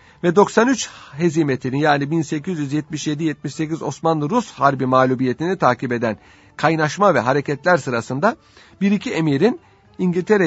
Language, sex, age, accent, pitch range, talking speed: Turkish, male, 50-69, native, 140-185 Hz, 105 wpm